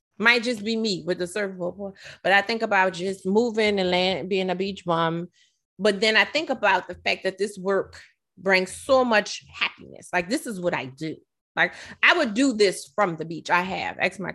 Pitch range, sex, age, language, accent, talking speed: 175-225 Hz, female, 20-39, English, American, 215 wpm